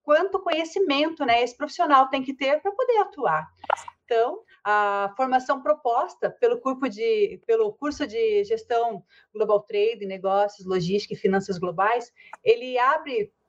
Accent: Brazilian